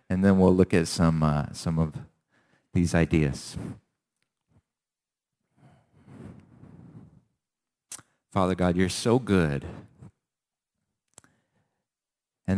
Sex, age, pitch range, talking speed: male, 50-69, 80-95 Hz, 80 wpm